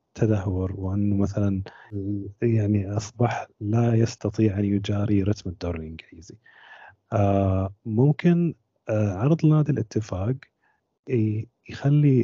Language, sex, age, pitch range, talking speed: Arabic, male, 30-49, 100-120 Hz, 95 wpm